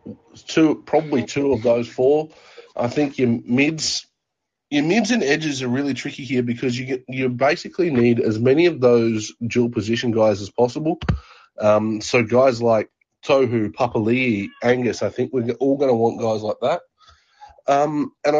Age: 30-49